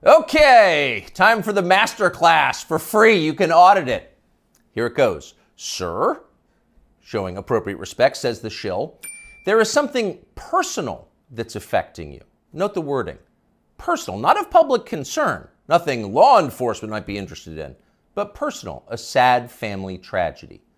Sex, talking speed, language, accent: male, 140 wpm, English, American